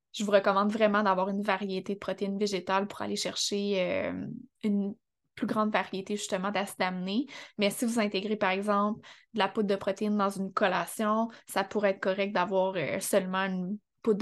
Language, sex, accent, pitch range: French, female, Canadian, 200-225 Hz